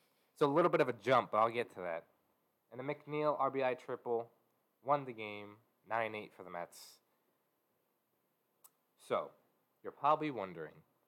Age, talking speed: 20-39, 145 wpm